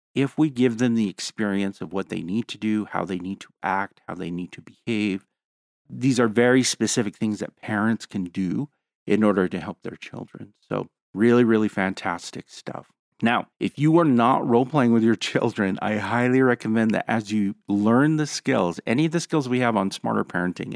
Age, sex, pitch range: 40-59, male, 95-120 Hz